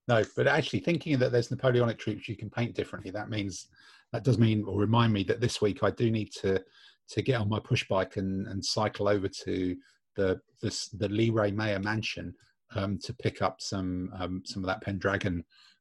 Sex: male